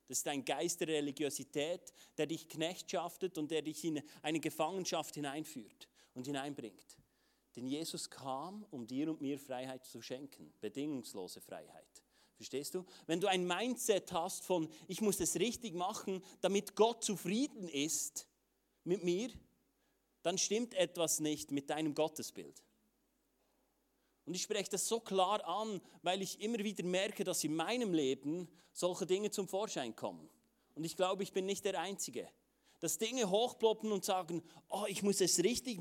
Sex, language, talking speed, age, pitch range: male, German, 160 wpm, 30-49, 150-195 Hz